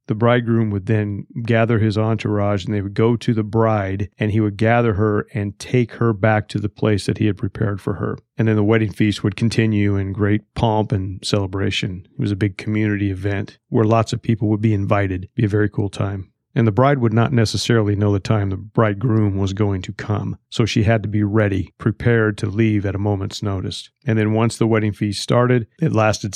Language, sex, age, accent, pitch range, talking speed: English, male, 40-59, American, 100-115 Hz, 230 wpm